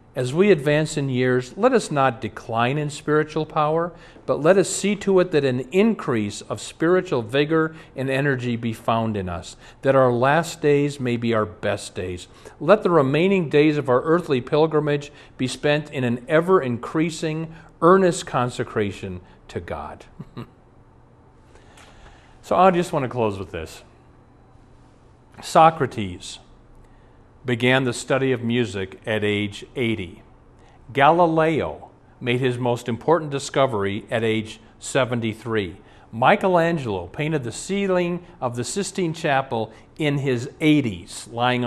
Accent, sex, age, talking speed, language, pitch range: American, male, 50-69, 135 wpm, English, 115-160 Hz